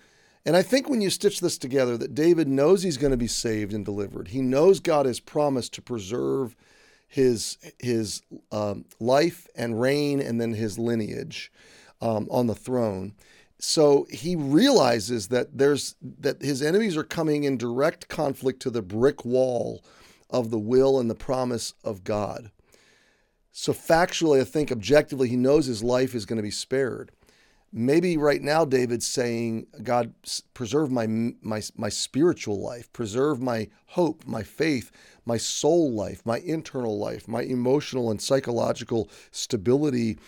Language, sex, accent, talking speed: English, male, American, 155 wpm